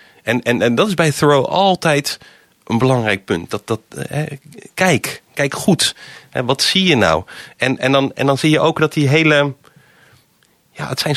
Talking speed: 195 wpm